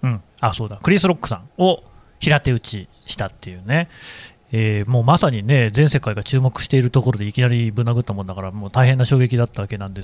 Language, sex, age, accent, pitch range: Japanese, male, 30-49, native, 110-165 Hz